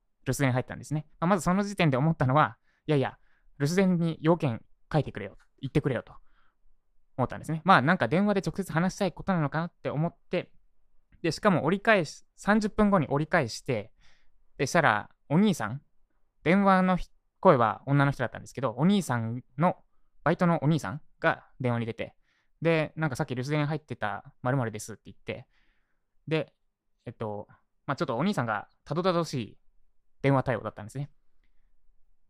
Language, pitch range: Japanese, 115-165 Hz